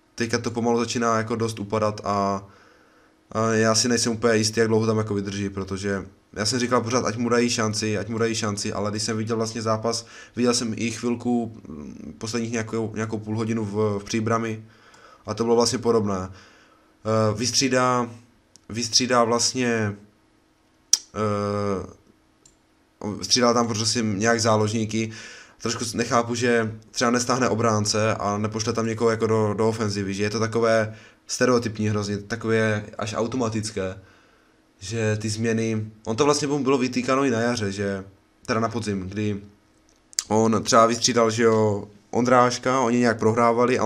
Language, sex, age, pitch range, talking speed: Czech, male, 20-39, 105-120 Hz, 150 wpm